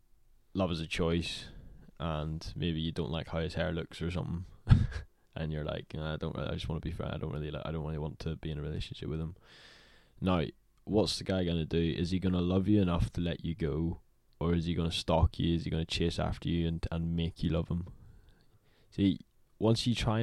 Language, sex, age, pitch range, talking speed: English, male, 10-29, 80-95 Hz, 235 wpm